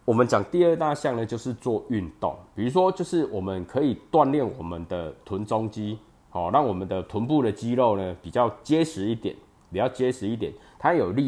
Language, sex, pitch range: Chinese, male, 95-135 Hz